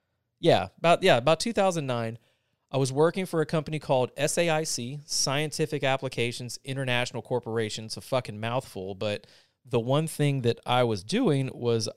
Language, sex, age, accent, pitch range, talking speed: English, male, 30-49, American, 115-155 Hz, 150 wpm